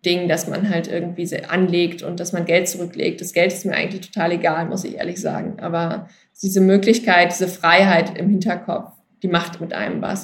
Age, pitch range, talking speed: 20-39, 175-195 Hz, 200 wpm